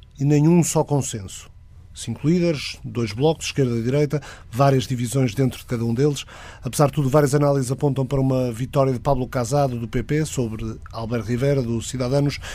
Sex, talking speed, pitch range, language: male, 175 wpm, 125-145 Hz, Portuguese